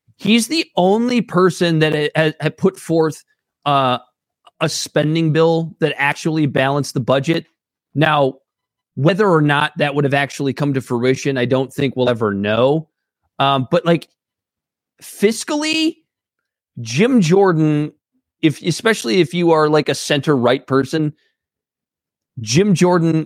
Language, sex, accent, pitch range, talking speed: English, male, American, 130-175 Hz, 135 wpm